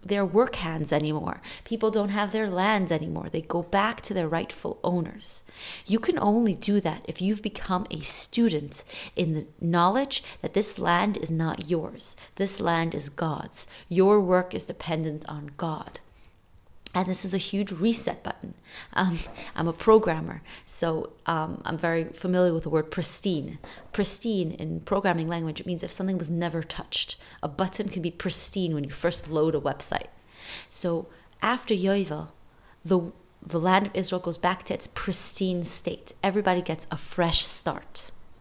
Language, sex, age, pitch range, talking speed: English, female, 30-49, 160-200 Hz, 165 wpm